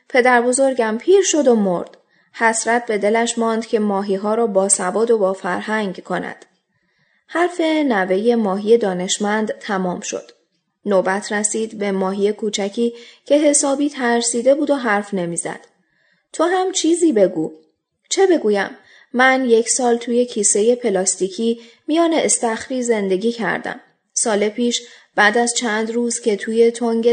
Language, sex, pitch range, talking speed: Persian, female, 200-245 Hz, 140 wpm